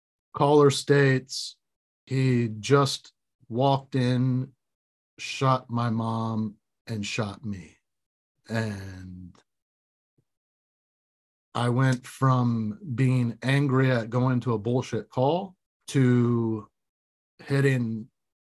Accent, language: American, English